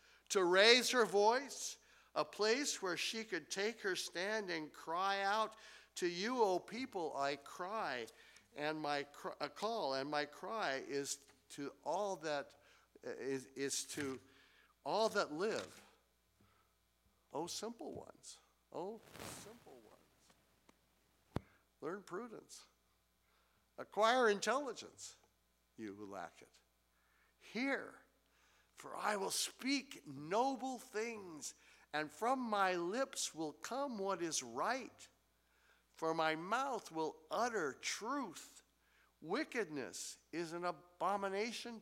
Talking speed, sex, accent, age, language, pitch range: 120 wpm, male, American, 60-79, English, 140-225 Hz